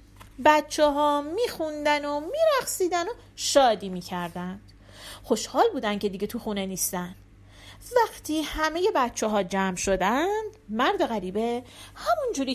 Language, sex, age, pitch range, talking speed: Persian, female, 40-59, 200-330 Hz, 125 wpm